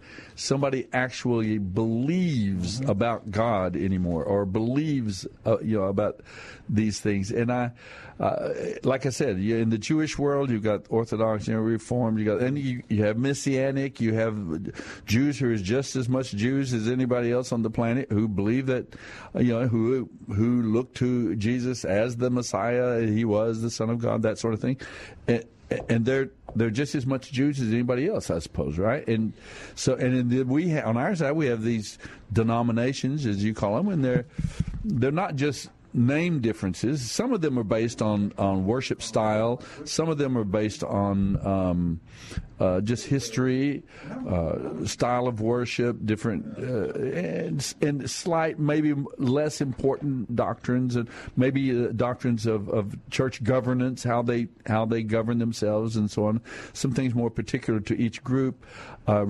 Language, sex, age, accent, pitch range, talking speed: English, male, 60-79, American, 110-130 Hz, 175 wpm